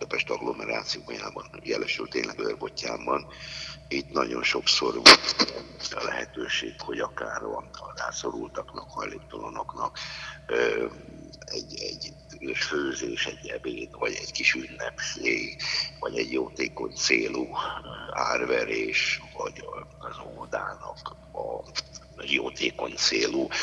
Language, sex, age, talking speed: Hungarian, male, 60-79, 90 wpm